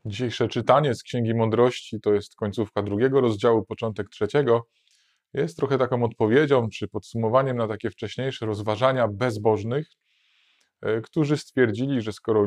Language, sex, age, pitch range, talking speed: Polish, male, 20-39, 105-125 Hz, 130 wpm